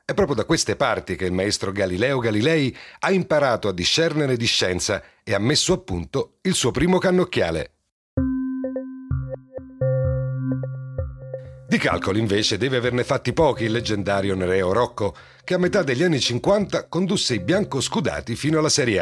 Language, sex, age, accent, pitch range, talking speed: Italian, male, 40-59, native, 110-170 Hz, 150 wpm